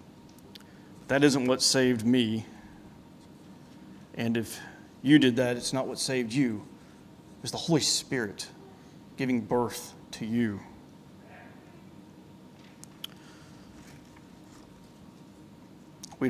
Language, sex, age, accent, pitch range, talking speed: English, male, 40-59, American, 120-145 Hz, 90 wpm